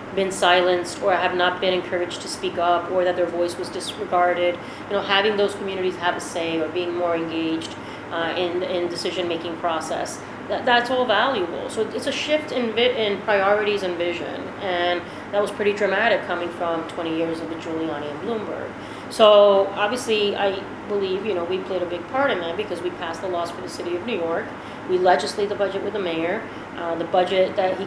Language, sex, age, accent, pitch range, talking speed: English, female, 30-49, American, 175-200 Hz, 210 wpm